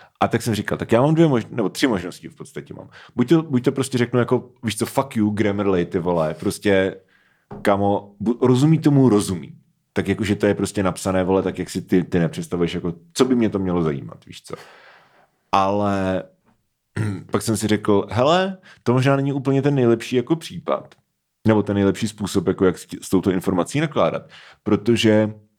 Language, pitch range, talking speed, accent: Czech, 100-120 Hz, 190 wpm, native